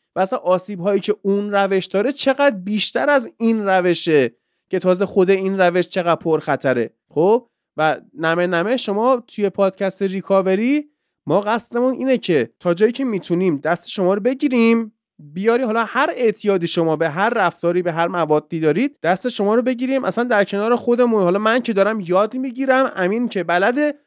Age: 30-49